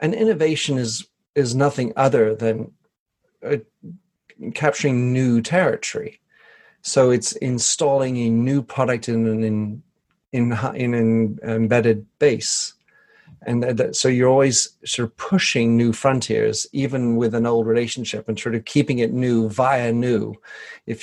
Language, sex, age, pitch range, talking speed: English, male, 40-59, 115-140 Hz, 145 wpm